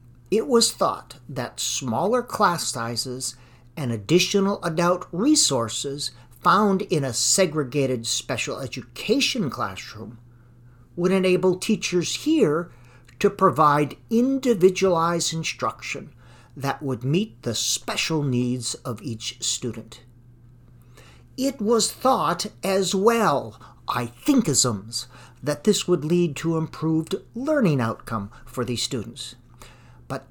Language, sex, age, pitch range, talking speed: English, male, 50-69, 120-175 Hz, 105 wpm